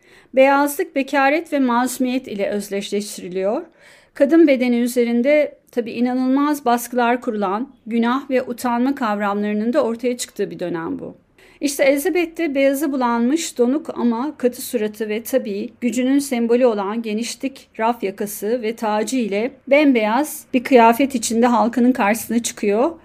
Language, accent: Turkish, native